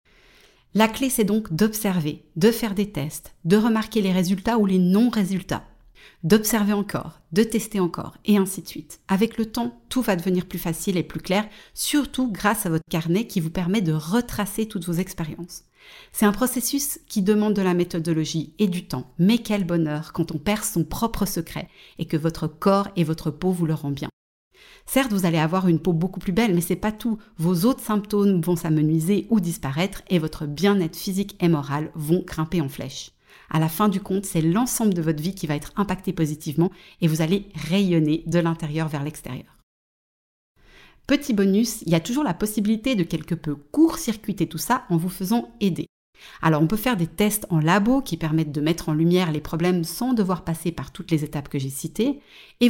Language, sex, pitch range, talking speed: French, female, 165-210 Hz, 205 wpm